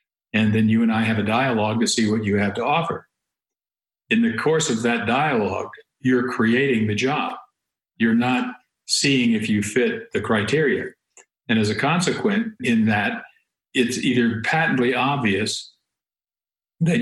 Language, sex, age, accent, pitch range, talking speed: English, male, 50-69, American, 105-120 Hz, 155 wpm